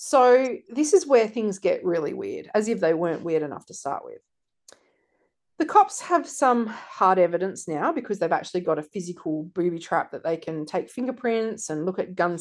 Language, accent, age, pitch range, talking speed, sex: English, Australian, 40-59, 180-290 Hz, 200 wpm, female